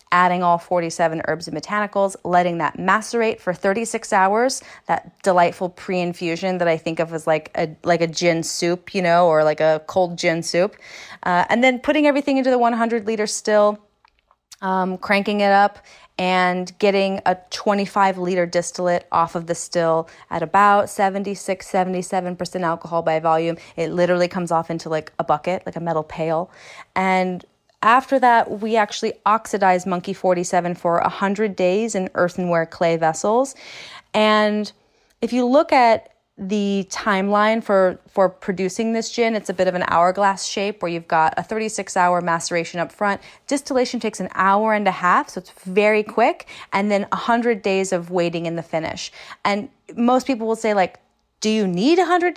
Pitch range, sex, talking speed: 175-215 Hz, female, 170 wpm